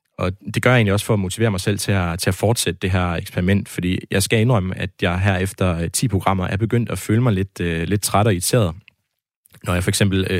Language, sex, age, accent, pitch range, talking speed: Danish, male, 20-39, native, 95-115 Hz, 260 wpm